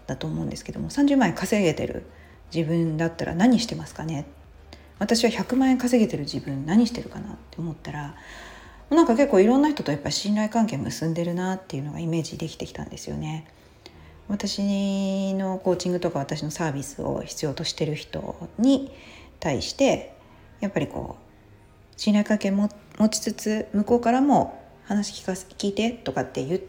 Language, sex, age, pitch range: Japanese, female, 40-59, 155-230 Hz